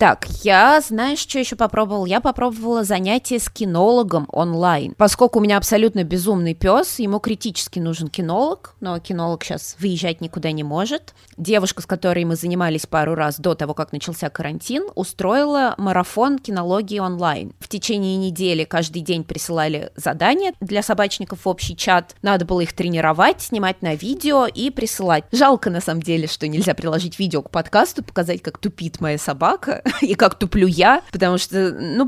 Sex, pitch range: female, 170-225 Hz